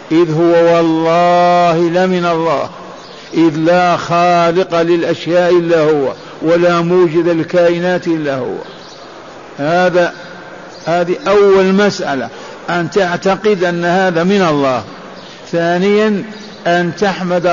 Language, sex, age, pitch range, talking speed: Arabic, male, 60-79, 165-180 Hz, 100 wpm